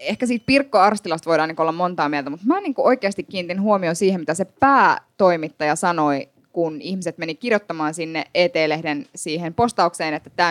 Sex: female